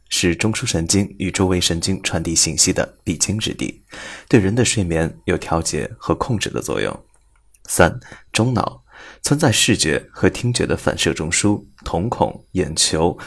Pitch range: 90-120 Hz